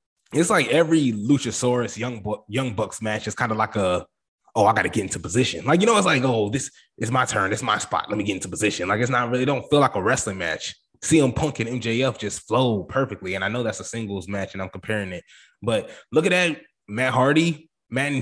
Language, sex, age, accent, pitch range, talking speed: English, male, 20-39, American, 105-140 Hz, 245 wpm